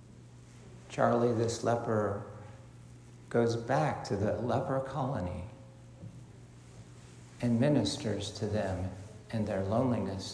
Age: 50-69